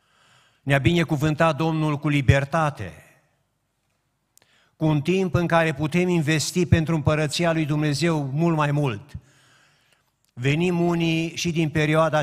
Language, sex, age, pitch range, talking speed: Romanian, male, 50-69, 125-155 Hz, 120 wpm